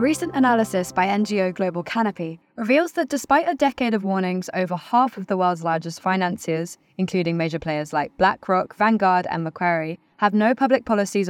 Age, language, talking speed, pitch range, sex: 20-39, English, 175 wpm, 170-225 Hz, female